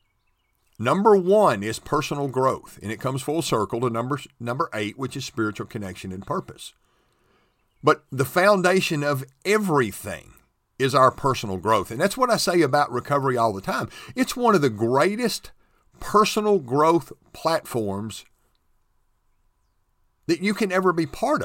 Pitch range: 110-175 Hz